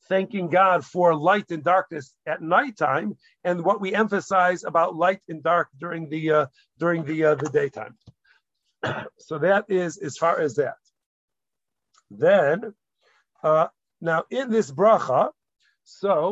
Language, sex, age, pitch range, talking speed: English, male, 50-69, 155-195 Hz, 140 wpm